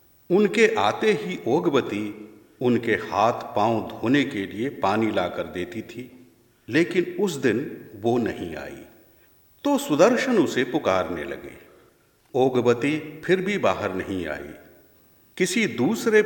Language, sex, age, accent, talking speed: Hindi, male, 50-69, native, 120 wpm